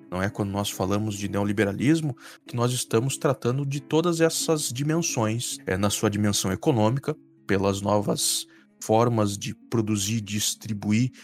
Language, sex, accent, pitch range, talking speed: Portuguese, male, Brazilian, 105-145 Hz, 135 wpm